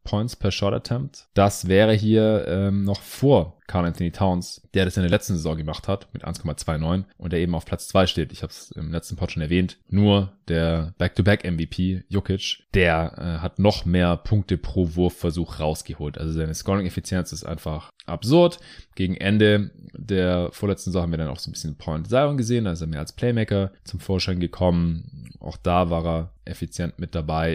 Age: 20-39